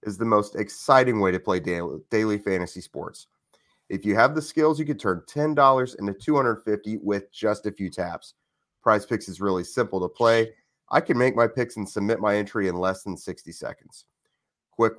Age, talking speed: 30-49, 190 wpm